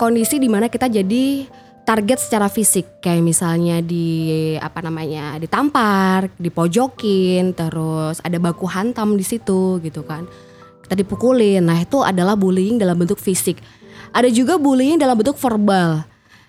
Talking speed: 140 wpm